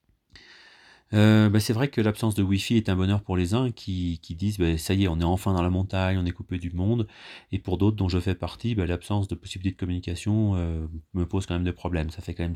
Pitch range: 85-105 Hz